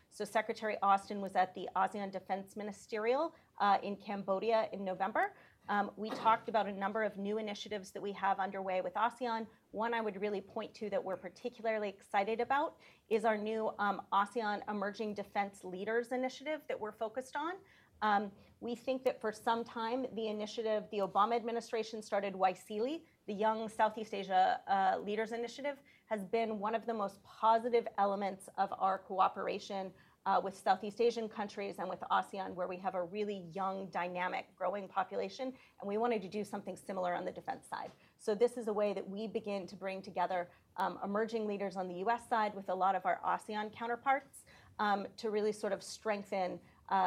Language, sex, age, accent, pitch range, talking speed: English, female, 30-49, American, 195-230 Hz, 185 wpm